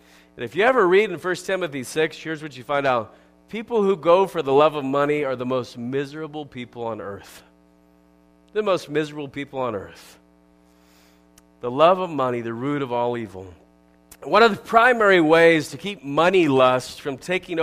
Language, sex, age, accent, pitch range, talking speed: English, male, 40-59, American, 120-185 Hz, 185 wpm